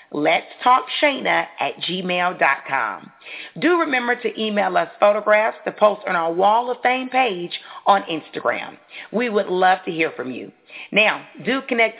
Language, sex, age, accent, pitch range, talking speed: English, female, 40-59, American, 180-245 Hz, 155 wpm